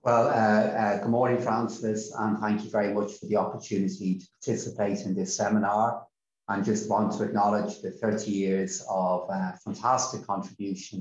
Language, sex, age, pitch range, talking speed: English, male, 30-49, 95-105 Hz, 170 wpm